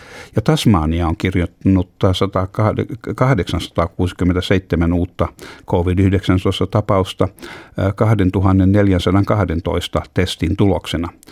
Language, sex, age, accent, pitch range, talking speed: Finnish, male, 60-79, native, 85-100 Hz, 55 wpm